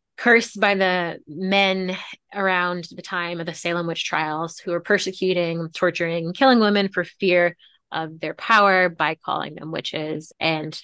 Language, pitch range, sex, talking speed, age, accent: English, 170-195 Hz, female, 155 wpm, 20-39, American